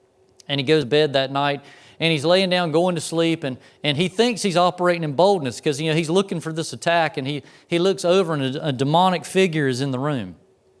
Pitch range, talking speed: 140-170 Hz, 245 wpm